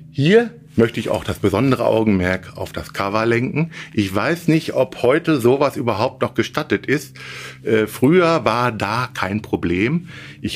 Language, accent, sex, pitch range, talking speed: German, German, male, 95-130 Hz, 160 wpm